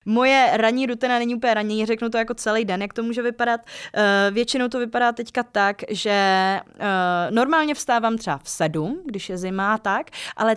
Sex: female